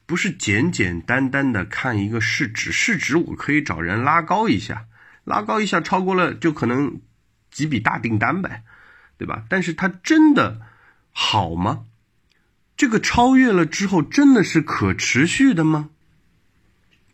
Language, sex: Chinese, male